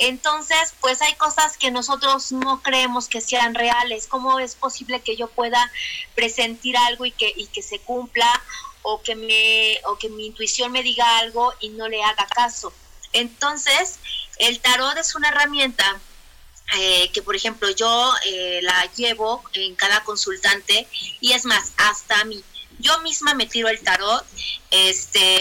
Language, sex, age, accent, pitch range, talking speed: Spanish, female, 30-49, Mexican, 205-255 Hz, 165 wpm